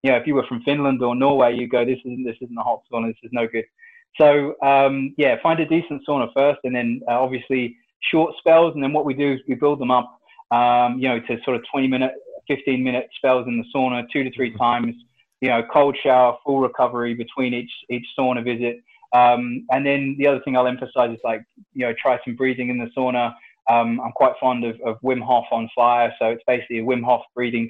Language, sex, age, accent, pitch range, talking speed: French, male, 20-39, British, 120-135 Hz, 235 wpm